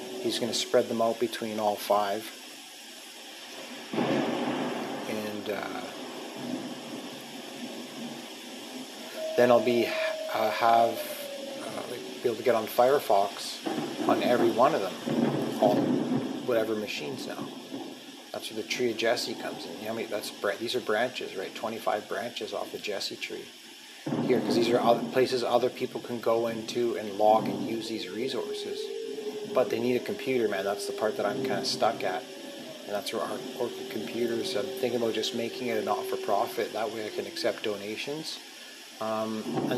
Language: English